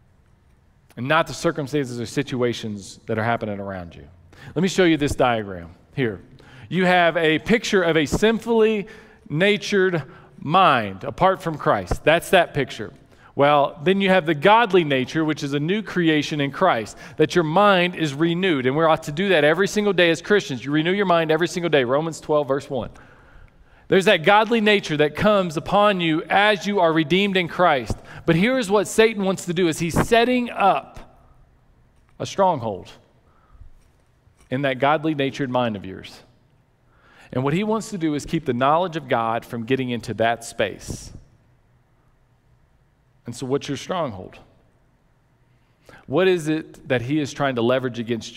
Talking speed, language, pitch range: 170 wpm, English, 125-175 Hz